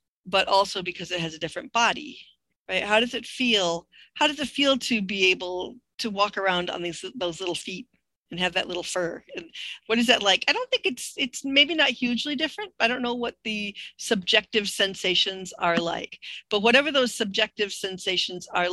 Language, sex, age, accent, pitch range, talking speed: English, female, 50-69, American, 175-230 Hz, 200 wpm